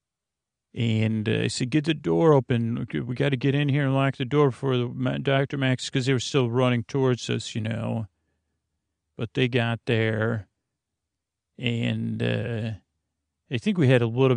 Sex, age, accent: male, 40-59, American